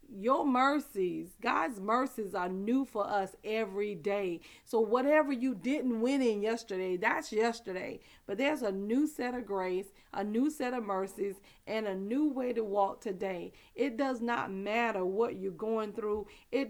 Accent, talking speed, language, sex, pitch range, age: American, 170 wpm, English, female, 205-245 Hz, 40-59